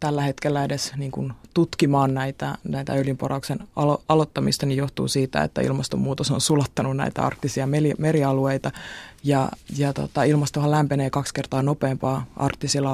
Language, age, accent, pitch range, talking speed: Finnish, 20-39, native, 135-155 Hz, 135 wpm